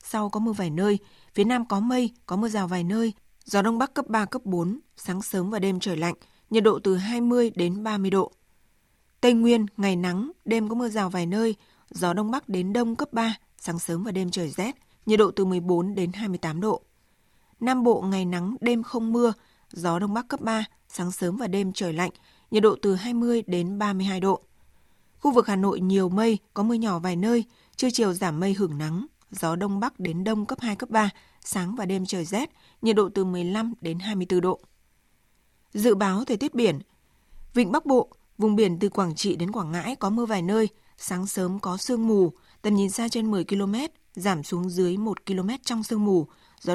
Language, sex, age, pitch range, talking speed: Vietnamese, female, 20-39, 185-230 Hz, 215 wpm